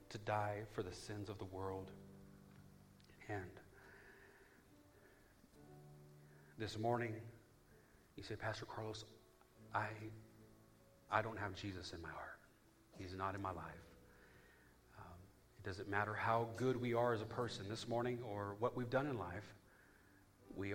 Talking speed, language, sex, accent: 140 wpm, English, male, American